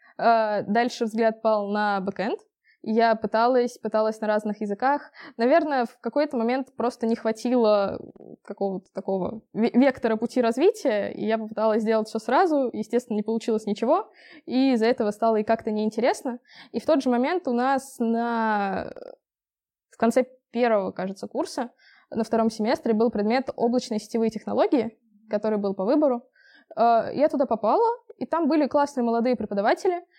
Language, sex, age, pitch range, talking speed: Russian, female, 20-39, 215-265 Hz, 145 wpm